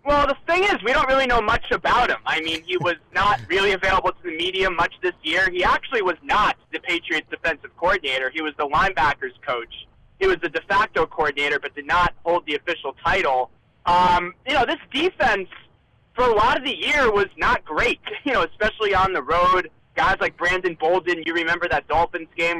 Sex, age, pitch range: male, 20-39, 155-195 Hz